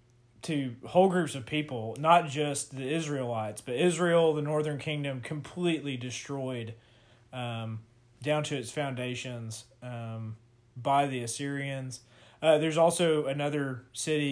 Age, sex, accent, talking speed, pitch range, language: 20-39, male, American, 125 wpm, 120-155 Hz, English